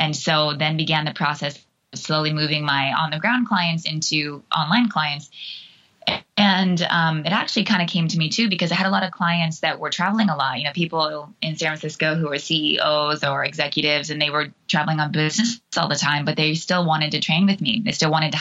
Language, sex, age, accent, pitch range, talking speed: English, female, 20-39, American, 150-185 Hz, 230 wpm